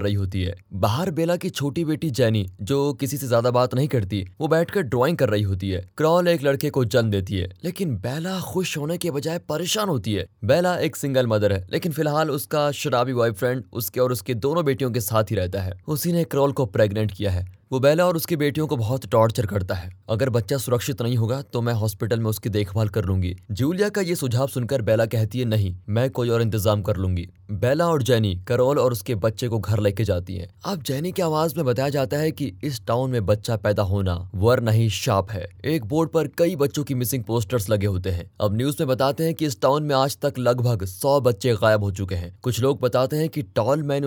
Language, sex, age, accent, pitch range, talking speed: Hindi, male, 20-39, native, 105-145 Hz, 235 wpm